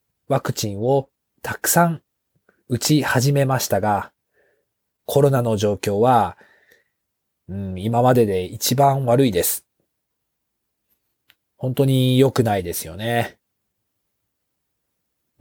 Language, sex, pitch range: Japanese, male, 105-135 Hz